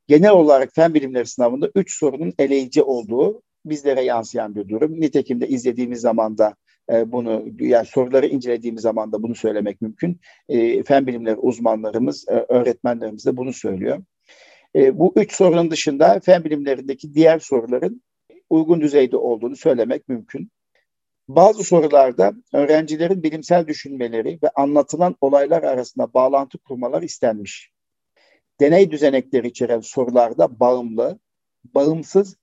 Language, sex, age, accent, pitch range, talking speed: Turkish, male, 60-79, native, 125-170 Hz, 120 wpm